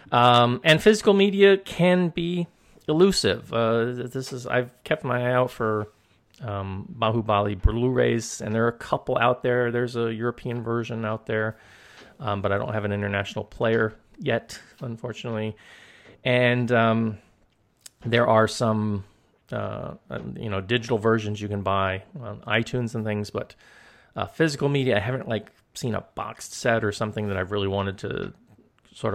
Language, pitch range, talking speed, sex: English, 100-125 Hz, 160 wpm, male